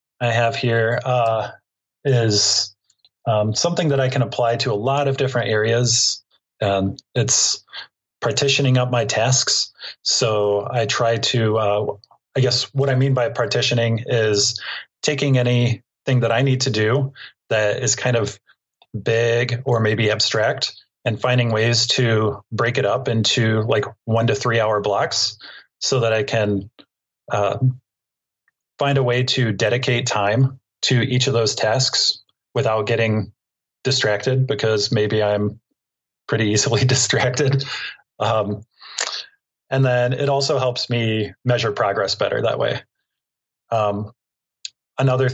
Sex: male